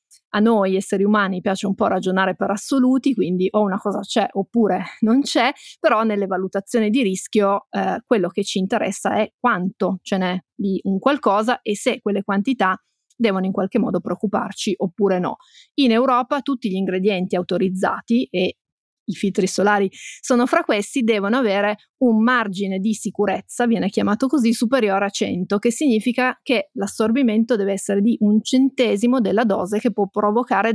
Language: Italian